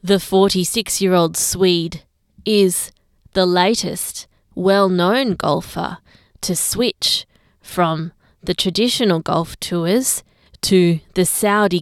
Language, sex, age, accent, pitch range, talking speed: English, female, 20-39, Australian, 170-205 Hz, 90 wpm